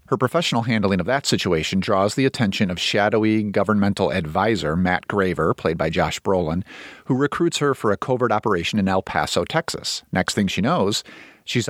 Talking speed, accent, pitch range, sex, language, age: 180 wpm, American, 95-125 Hz, male, English, 40-59